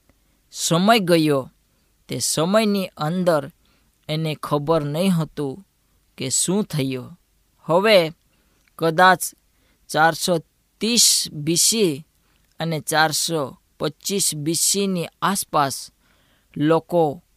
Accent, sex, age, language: native, female, 20-39, Gujarati